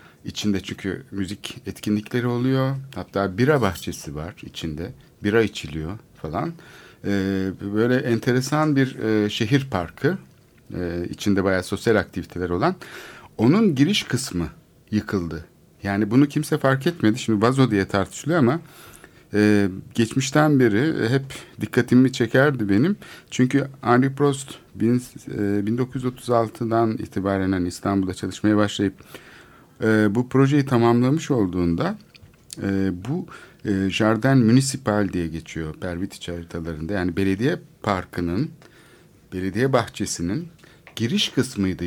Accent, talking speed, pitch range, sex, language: native, 105 wpm, 95-125 Hz, male, Turkish